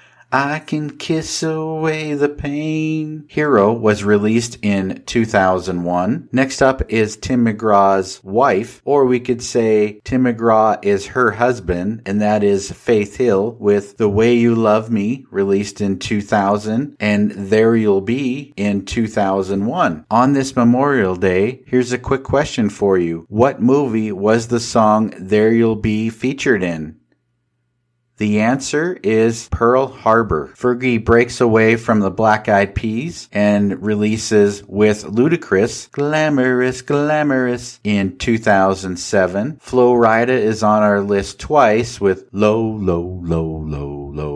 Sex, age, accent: male, 50-69, American